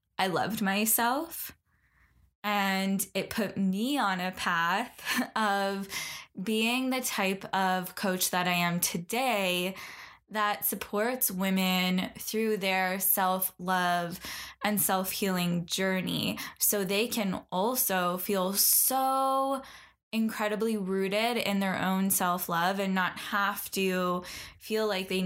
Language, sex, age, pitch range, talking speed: English, female, 10-29, 185-215 Hz, 115 wpm